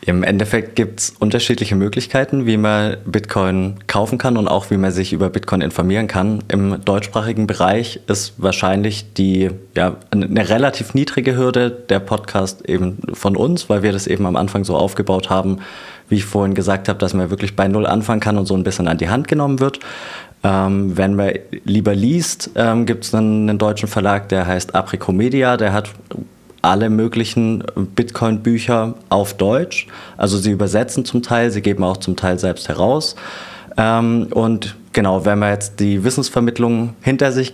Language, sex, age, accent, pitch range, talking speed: German, male, 20-39, German, 95-115 Hz, 175 wpm